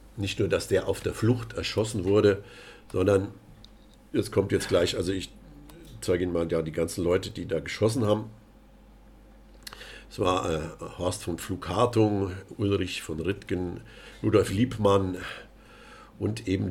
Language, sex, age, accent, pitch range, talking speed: German, male, 50-69, German, 90-110 Hz, 140 wpm